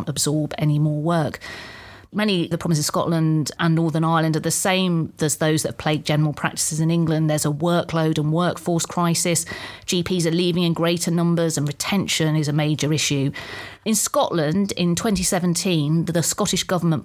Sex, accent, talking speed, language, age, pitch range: female, British, 175 wpm, English, 30-49, 150-175 Hz